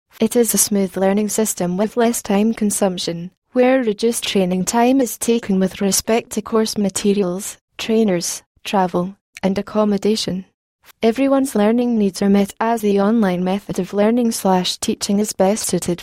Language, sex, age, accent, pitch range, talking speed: English, female, 20-39, British, 185-220 Hz, 155 wpm